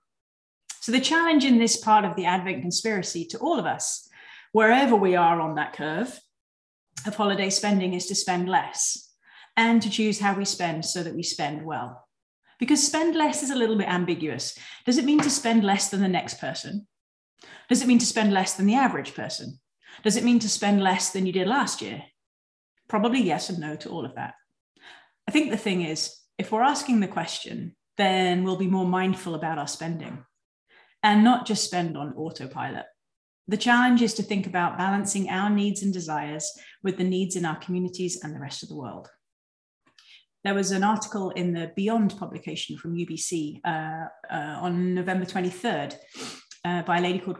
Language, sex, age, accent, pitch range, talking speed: English, female, 30-49, British, 175-220 Hz, 190 wpm